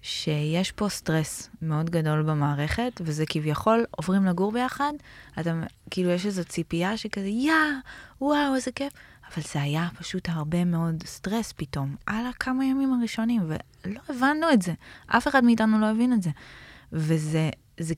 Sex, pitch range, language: female, 160-215 Hz, Hebrew